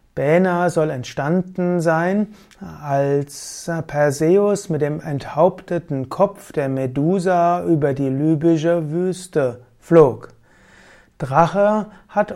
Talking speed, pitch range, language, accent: 90 wpm, 140-175 Hz, German, German